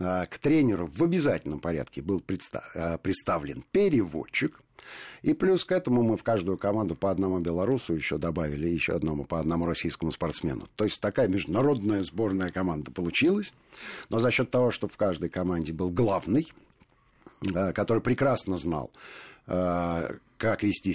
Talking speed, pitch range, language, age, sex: 140 wpm, 85-105 Hz, Russian, 50-69, male